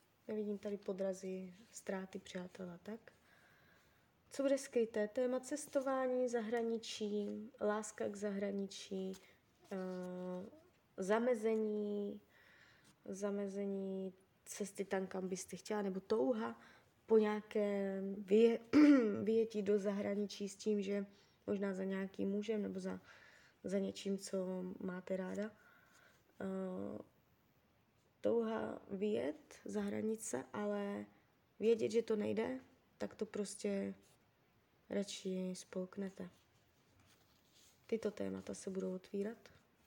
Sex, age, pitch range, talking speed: female, 20-39, 185-220 Hz, 95 wpm